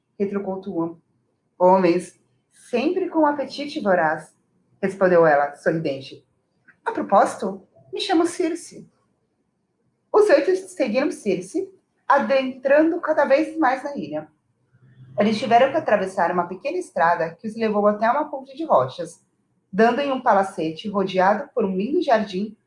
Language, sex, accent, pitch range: Portuguese, female, Brazilian, 185-305 Hz